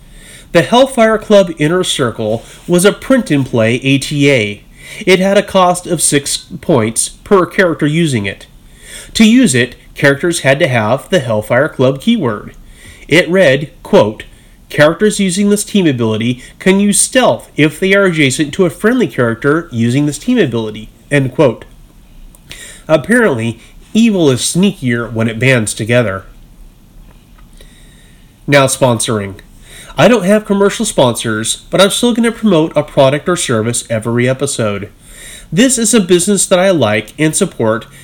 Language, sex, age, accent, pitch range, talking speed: English, male, 30-49, American, 120-190 Hz, 145 wpm